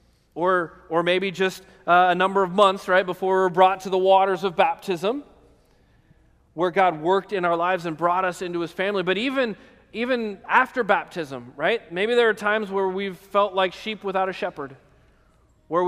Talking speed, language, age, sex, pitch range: 190 wpm, English, 30-49, male, 145-190 Hz